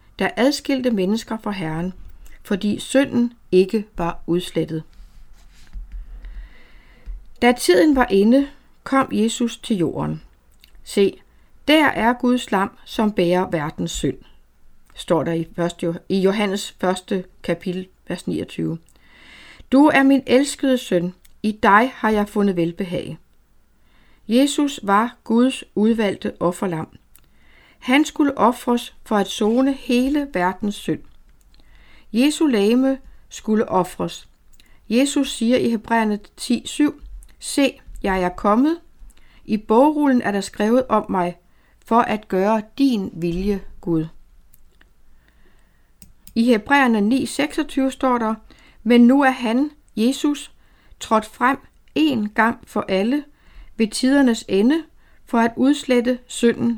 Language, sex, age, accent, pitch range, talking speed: Danish, female, 60-79, native, 185-255 Hz, 115 wpm